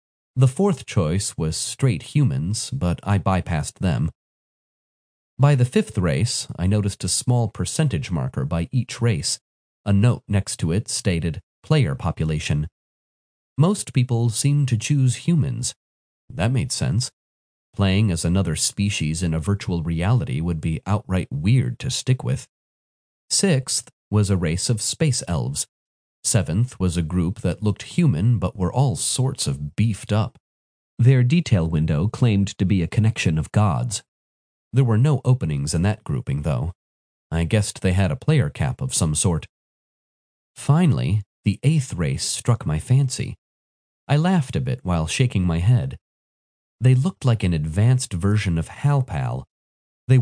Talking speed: 155 wpm